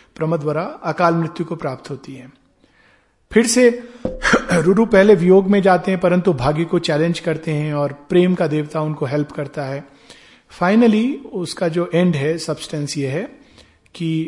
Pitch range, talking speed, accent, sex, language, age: 160-215 Hz, 160 wpm, native, male, Hindi, 40-59